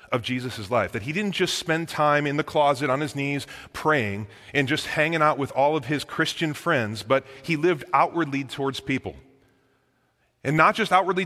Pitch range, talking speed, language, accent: 125-165 Hz, 190 wpm, English, American